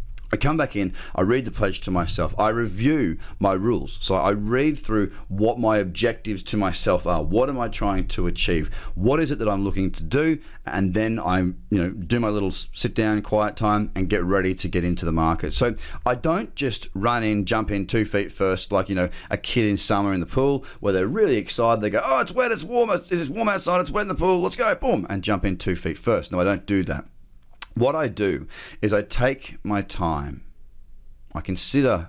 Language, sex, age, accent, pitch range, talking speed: English, male, 30-49, Australian, 90-120 Hz, 230 wpm